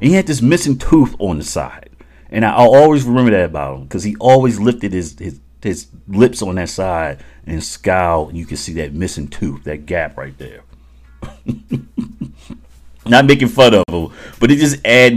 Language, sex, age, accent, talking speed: English, male, 40-59, American, 195 wpm